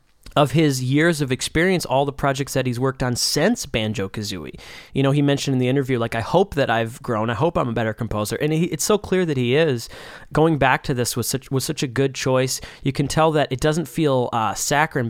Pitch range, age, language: 120-150 Hz, 20-39, English